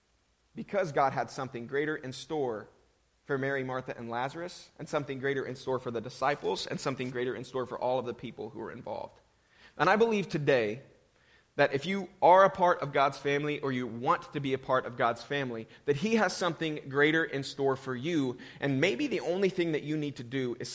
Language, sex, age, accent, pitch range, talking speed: English, male, 30-49, American, 120-150 Hz, 220 wpm